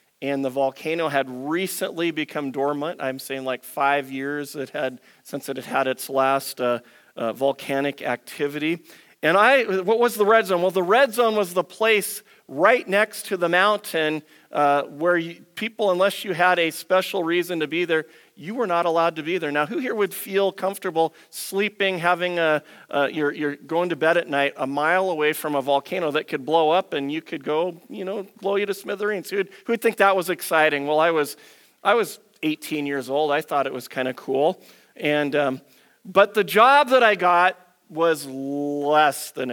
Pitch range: 145-190 Hz